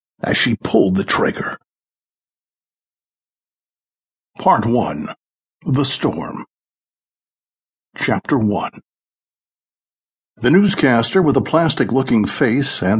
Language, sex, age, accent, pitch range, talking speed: English, male, 60-79, American, 120-155 Hz, 85 wpm